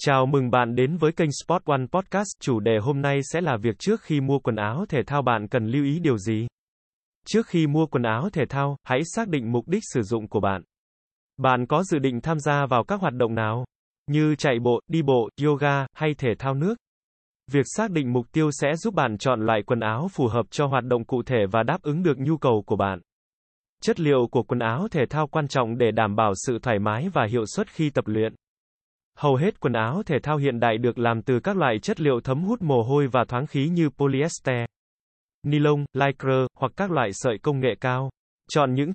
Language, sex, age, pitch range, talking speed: Vietnamese, male, 20-39, 120-160 Hz, 230 wpm